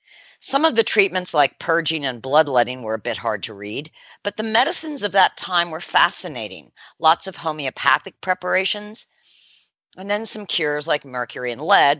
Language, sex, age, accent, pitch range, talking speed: English, female, 50-69, American, 135-195 Hz, 170 wpm